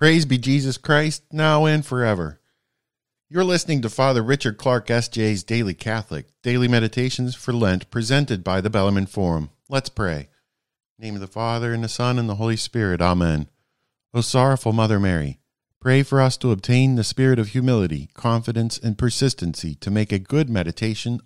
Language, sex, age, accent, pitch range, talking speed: English, male, 50-69, American, 95-130 Hz, 175 wpm